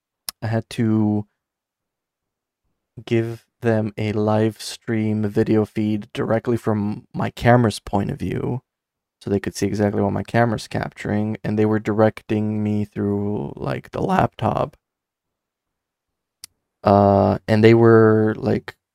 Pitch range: 105-130 Hz